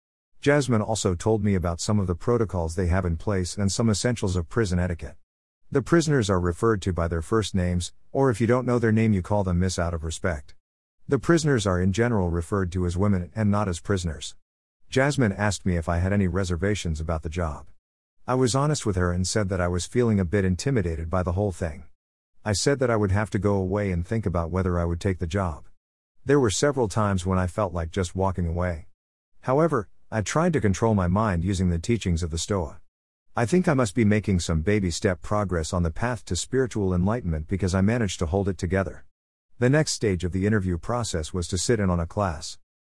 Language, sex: English, male